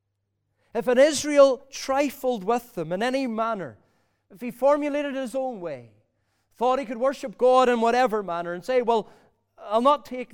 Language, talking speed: English, 170 wpm